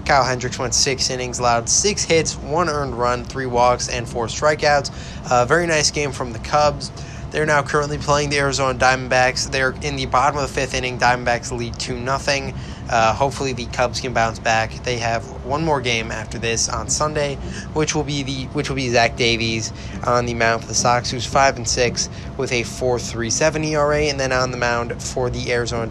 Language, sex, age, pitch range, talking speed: English, male, 20-39, 120-145 Hz, 190 wpm